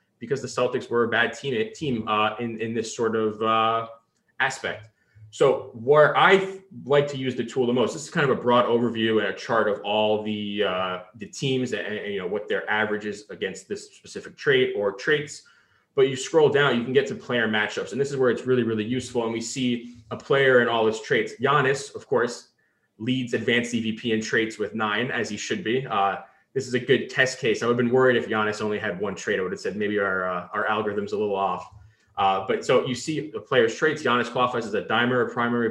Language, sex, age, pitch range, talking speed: English, male, 20-39, 110-135 Hz, 235 wpm